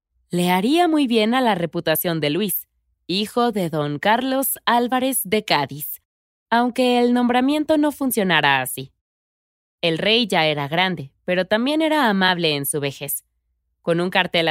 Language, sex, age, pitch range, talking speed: Spanish, female, 20-39, 155-230 Hz, 155 wpm